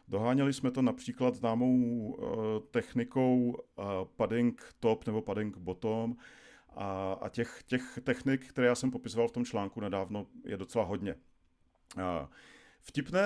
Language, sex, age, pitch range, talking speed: Czech, male, 40-59, 110-130 Hz, 120 wpm